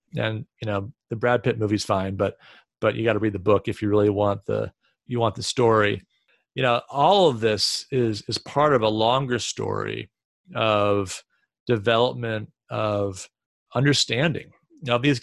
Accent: American